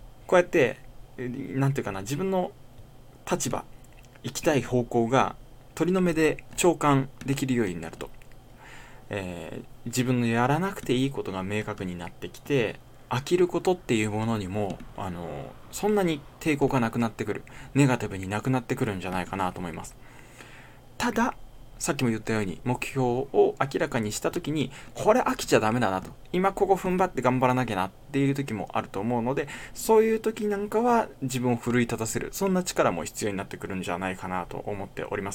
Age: 20-39